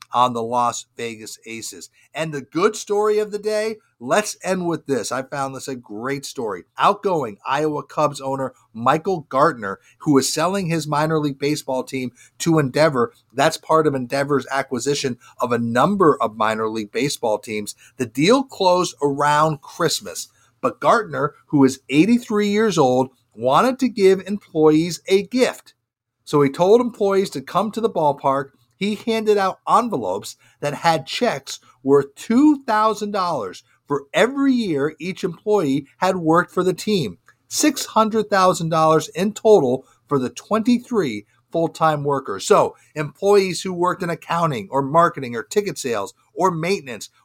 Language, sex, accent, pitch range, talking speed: English, male, American, 135-205 Hz, 150 wpm